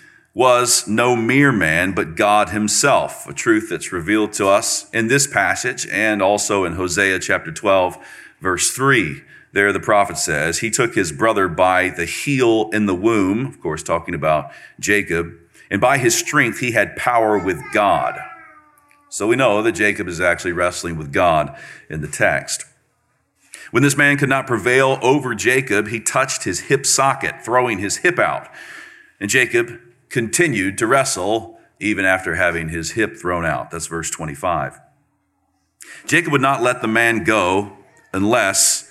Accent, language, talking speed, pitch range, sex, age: American, English, 160 wpm, 100-140 Hz, male, 40-59